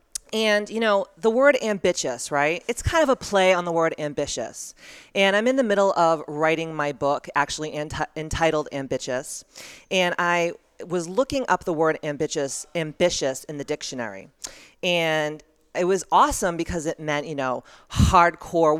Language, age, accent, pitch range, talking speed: English, 40-59, American, 155-195 Hz, 160 wpm